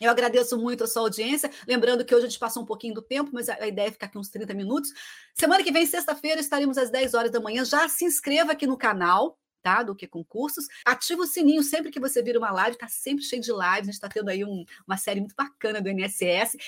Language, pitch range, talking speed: Portuguese, 230-310 Hz, 250 wpm